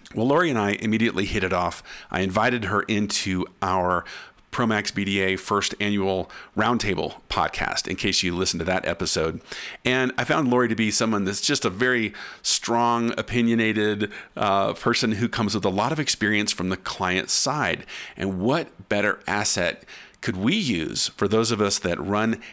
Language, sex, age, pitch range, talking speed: English, male, 40-59, 95-110 Hz, 175 wpm